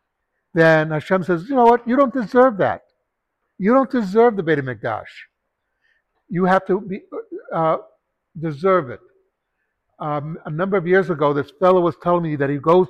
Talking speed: 165 wpm